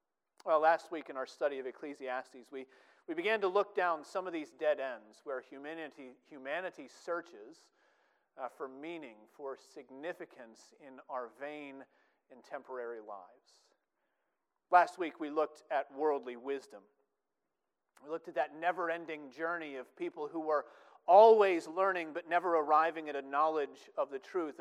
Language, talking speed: English, 150 wpm